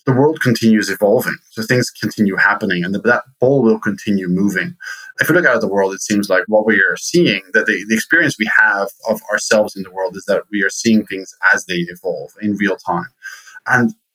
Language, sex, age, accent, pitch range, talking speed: English, male, 30-49, Norwegian, 100-125 Hz, 225 wpm